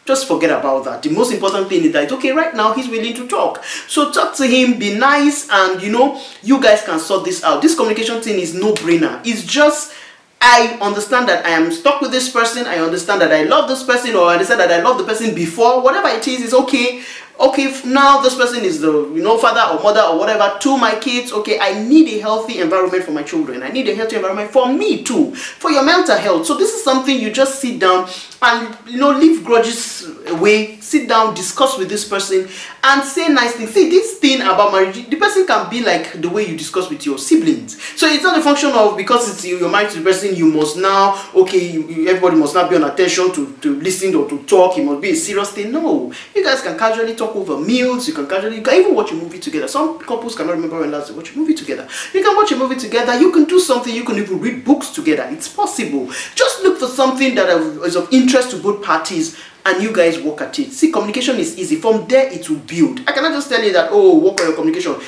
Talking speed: 245 wpm